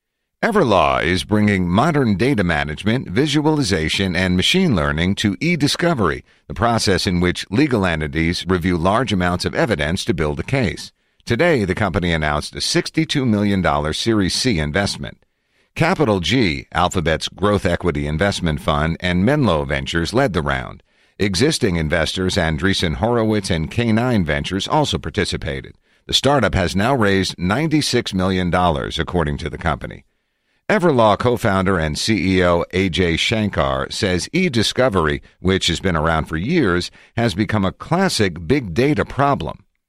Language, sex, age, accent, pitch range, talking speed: English, male, 50-69, American, 85-110 Hz, 135 wpm